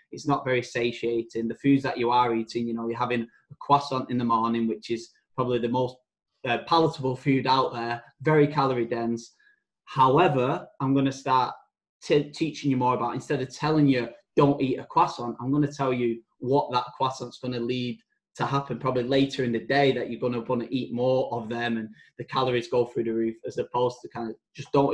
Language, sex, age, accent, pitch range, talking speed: English, male, 20-39, British, 115-135 Hz, 220 wpm